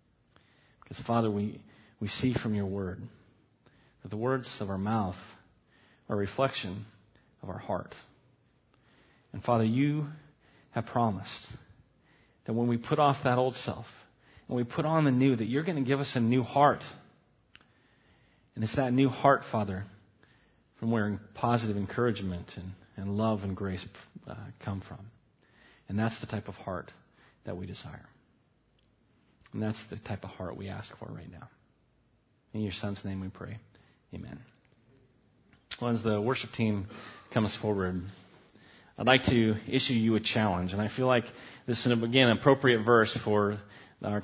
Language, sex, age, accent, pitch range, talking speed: English, male, 40-59, American, 105-125 Hz, 160 wpm